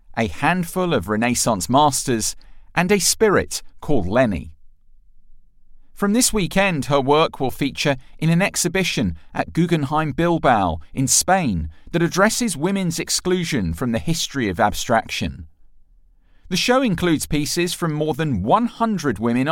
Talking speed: 130 wpm